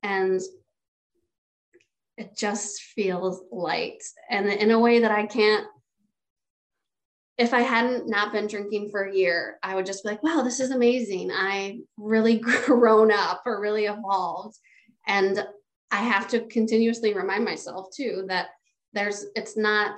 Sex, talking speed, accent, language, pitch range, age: female, 145 wpm, American, English, 195-235 Hz, 20-39